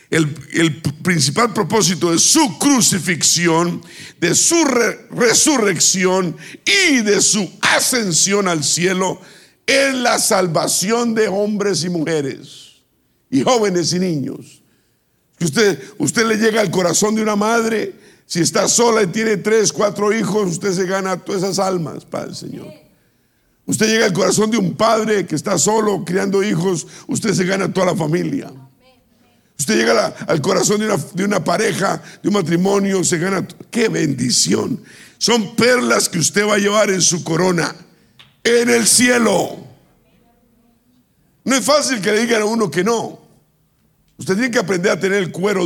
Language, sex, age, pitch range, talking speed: Spanish, male, 50-69, 180-220 Hz, 155 wpm